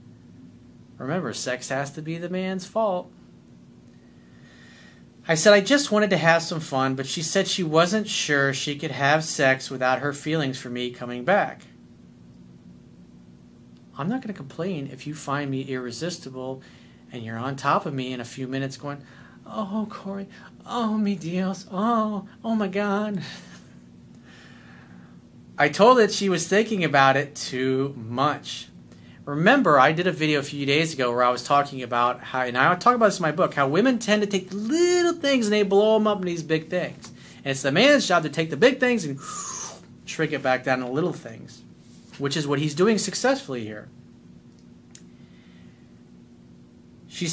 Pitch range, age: 125-190 Hz, 30-49